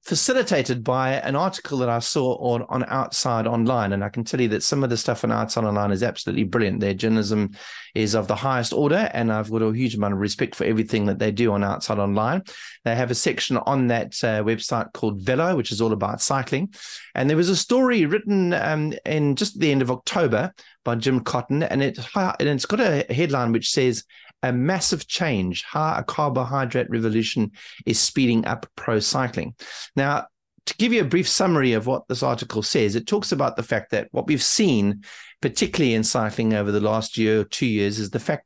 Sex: male